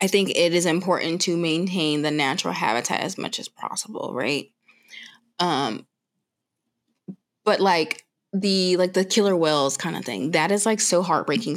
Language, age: English, 20-39